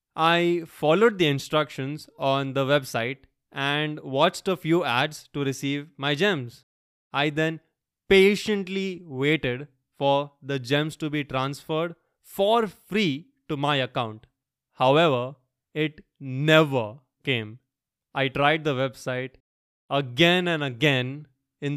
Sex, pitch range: male, 135-155 Hz